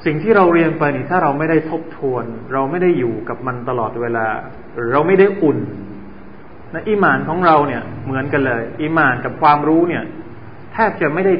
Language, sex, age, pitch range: Thai, male, 20-39, 130-170 Hz